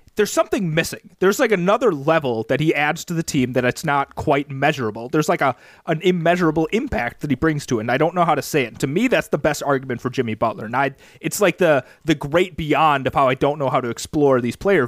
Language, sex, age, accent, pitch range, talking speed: English, male, 30-49, American, 140-205 Hz, 260 wpm